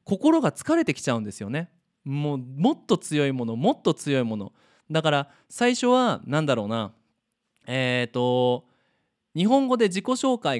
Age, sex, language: 20-39, male, Japanese